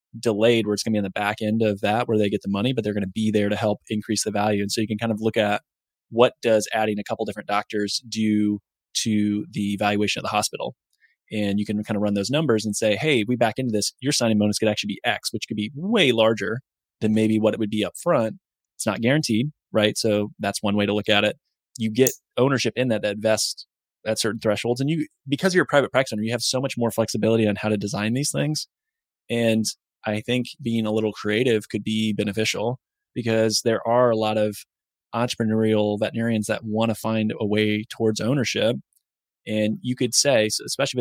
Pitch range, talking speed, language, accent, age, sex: 105-120 Hz, 230 wpm, English, American, 20-39, male